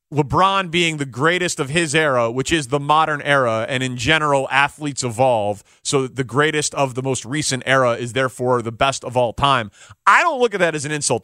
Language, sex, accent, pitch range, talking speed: English, male, American, 135-205 Hz, 215 wpm